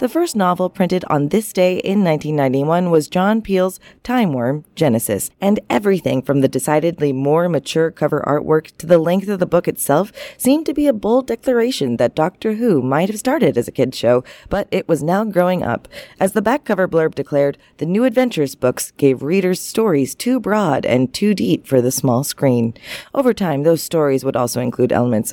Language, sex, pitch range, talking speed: English, female, 130-195 Hz, 195 wpm